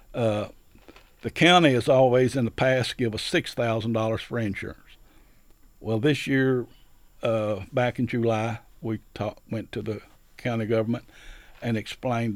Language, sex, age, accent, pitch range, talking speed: English, male, 60-79, American, 110-130 Hz, 140 wpm